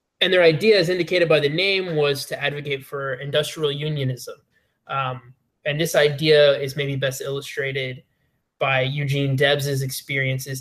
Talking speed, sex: 145 wpm, male